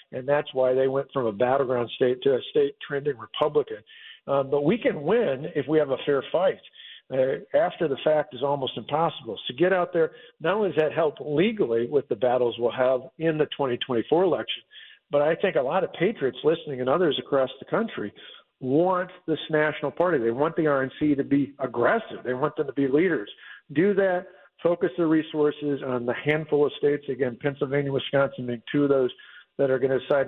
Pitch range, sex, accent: 135-170 Hz, male, American